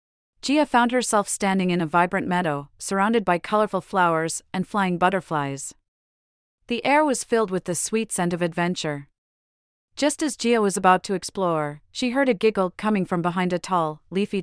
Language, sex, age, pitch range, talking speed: English, female, 40-59, 170-220 Hz, 175 wpm